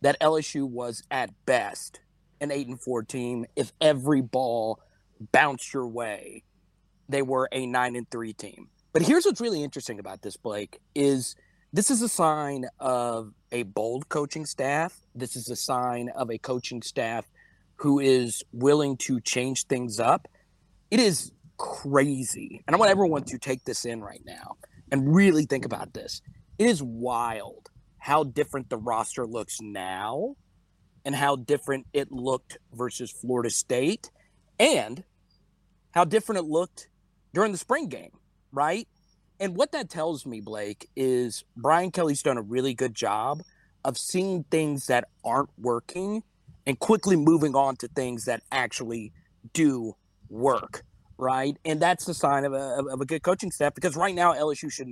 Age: 30-49